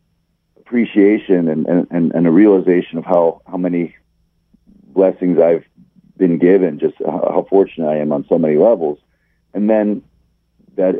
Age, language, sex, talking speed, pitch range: 40-59, English, male, 140 wpm, 85-100 Hz